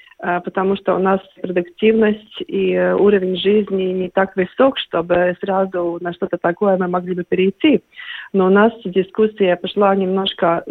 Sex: female